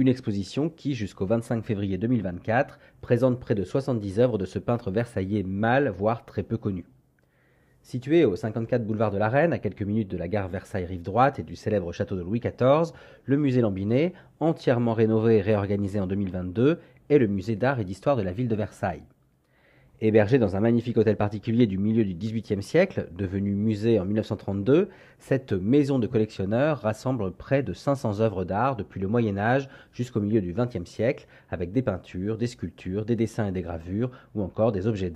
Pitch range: 100-125 Hz